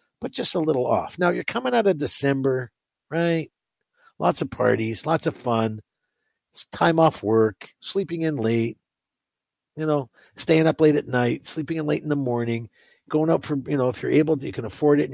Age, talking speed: 50-69, 205 wpm